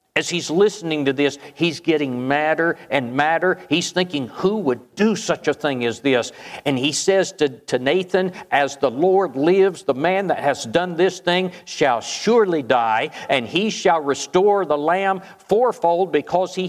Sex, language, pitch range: male, English, 145-185 Hz